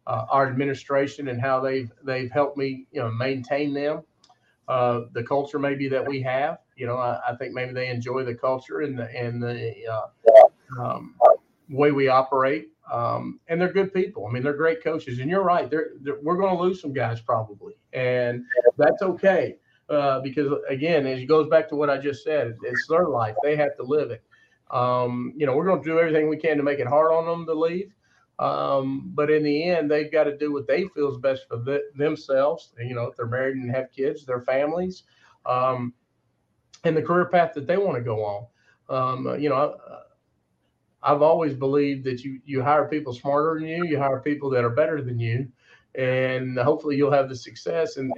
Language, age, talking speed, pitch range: English, 40-59, 210 wpm, 125-150 Hz